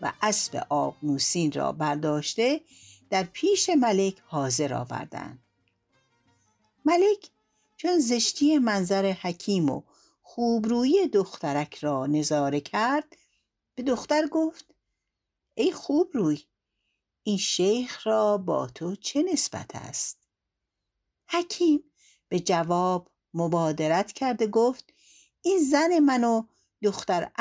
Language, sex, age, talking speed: Persian, female, 60-79, 105 wpm